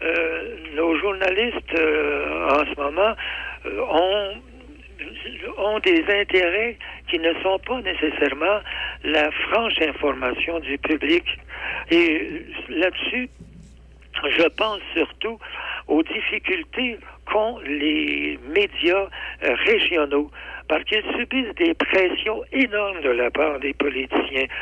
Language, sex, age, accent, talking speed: French, male, 60-79, French, 105 wpm